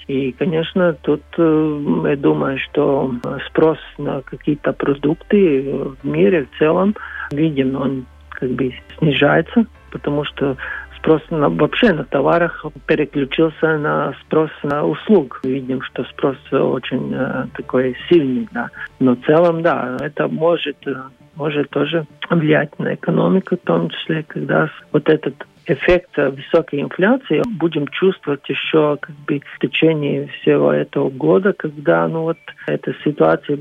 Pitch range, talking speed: 140-170 Hz, 135 wpm